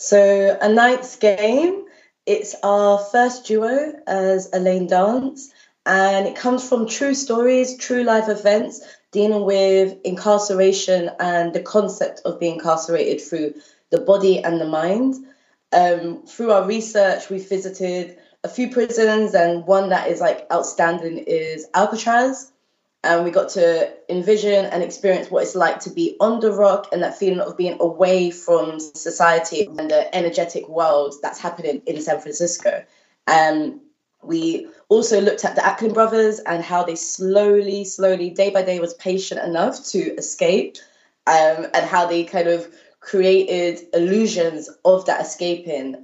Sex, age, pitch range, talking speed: female, 20-39, 175-230 Hz, 150 wpm